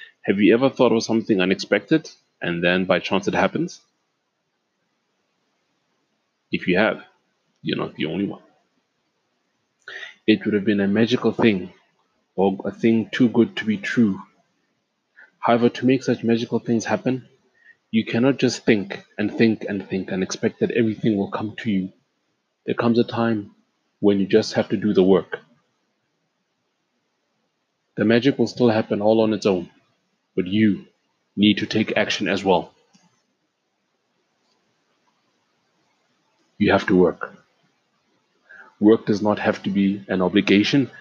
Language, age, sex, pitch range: English, 30-49, male, 100-120 Hz